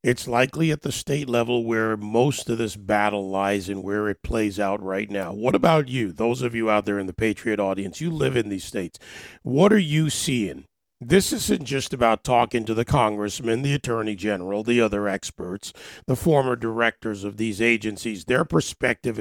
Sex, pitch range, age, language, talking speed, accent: male, 105-130 Hz, 50-69, English, 195 wpm, American